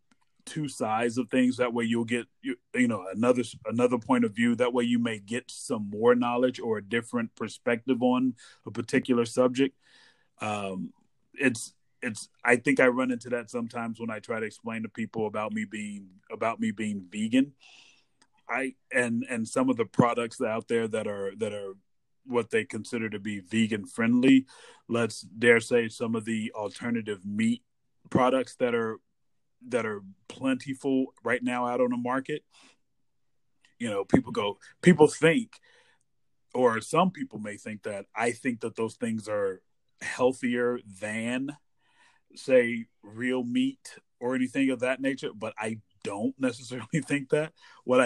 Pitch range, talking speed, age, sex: 115-145 Hz, 165 wpm, 30-49, male